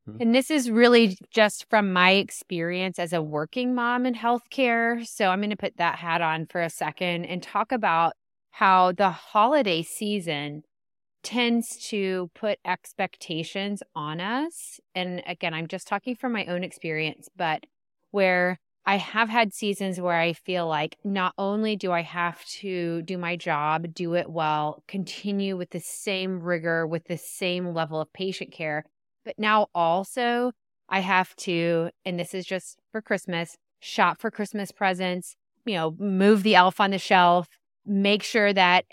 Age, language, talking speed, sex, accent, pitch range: 30-49, English, 165 wpm, female, American, 170-205 Hz